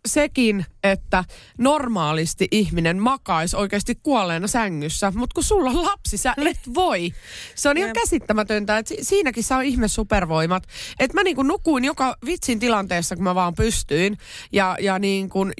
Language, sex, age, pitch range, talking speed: Finnish, female, 30-49, 175-240 Hz, 160 wpm